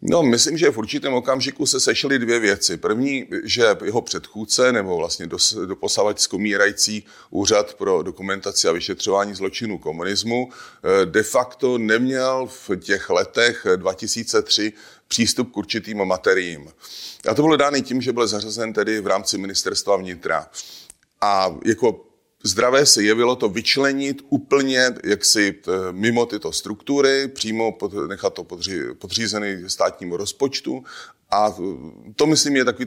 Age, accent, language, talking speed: 30-49, native, Czech, 140 wpm